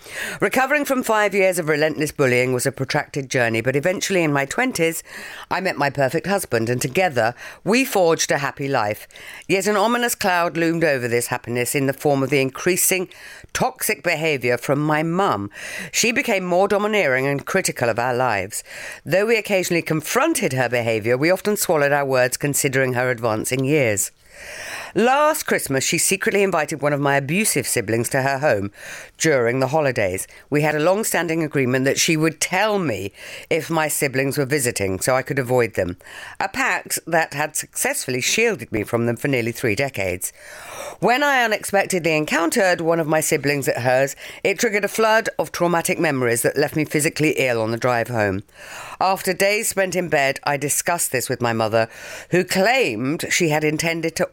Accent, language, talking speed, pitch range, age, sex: British, English, 180 wpm, 130-185 Hz, 50-69, female